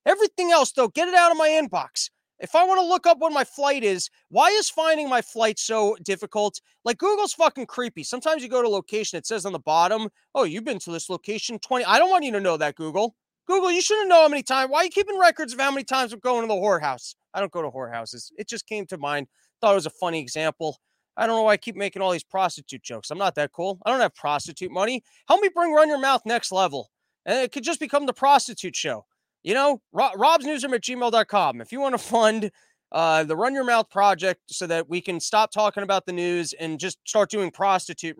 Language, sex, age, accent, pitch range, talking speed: English, male, 30-49, American, 180-270 Hz, 250 wpm